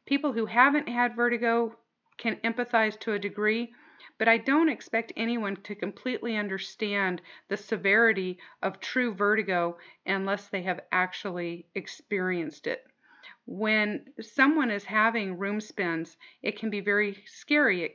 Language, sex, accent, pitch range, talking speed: English, female, American, 185-225 Hz, 135 wpm